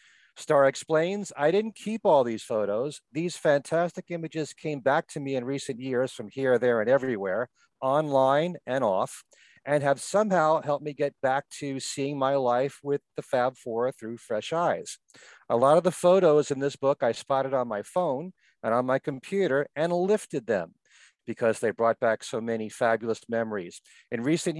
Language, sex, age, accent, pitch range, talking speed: English, male, 40-59, American, 120-155 Hz, 180 wpm